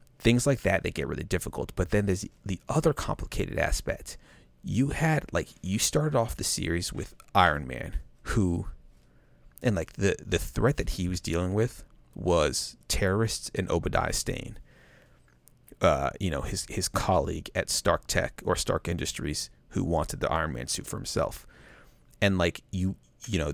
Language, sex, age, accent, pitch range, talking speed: English, male, 30-49, American, 80-100 Hz, 170 wpm